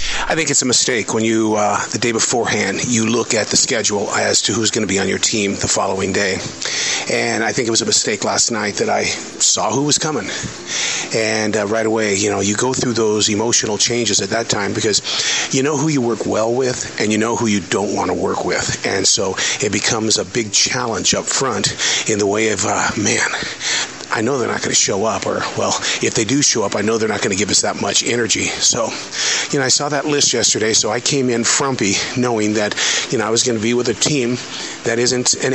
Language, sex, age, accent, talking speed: English, male, 40-59, American, 240 wpm